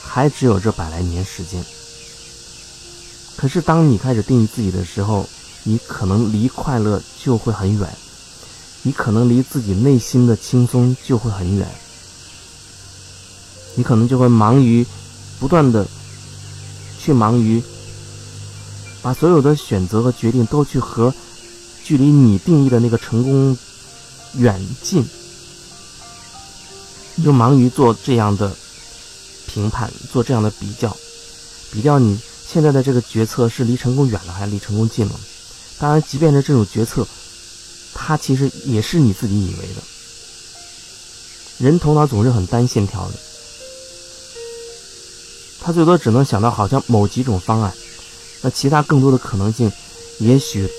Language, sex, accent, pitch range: Chinese, male, native, 105-135 Hz